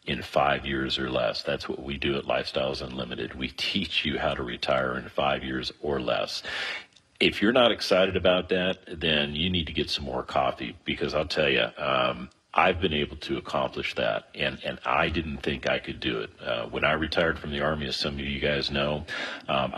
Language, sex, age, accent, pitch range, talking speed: English, male, 40-59, American, 70-80 Hz, 215 wpm